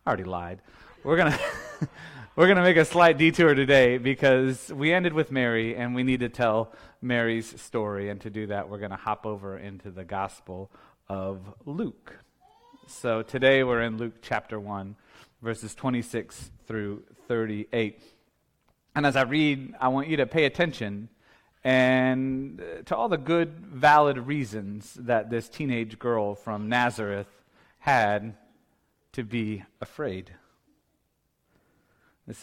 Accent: American